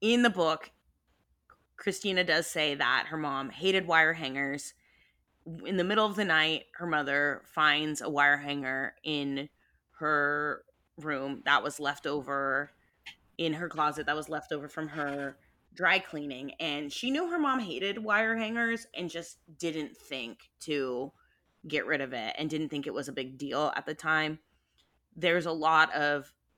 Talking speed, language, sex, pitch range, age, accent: 165 wpm, English, female, 140-180 Hz, 20-39, American